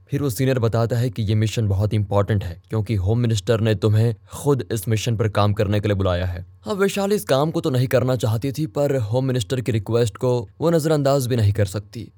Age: 20-39